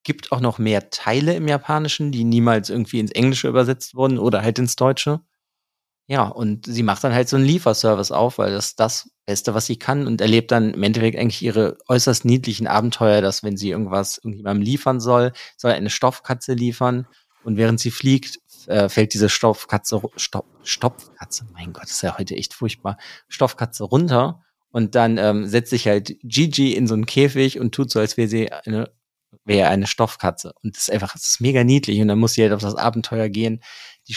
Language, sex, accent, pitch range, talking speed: German, male, German, 110-130 Hz, 200 wpm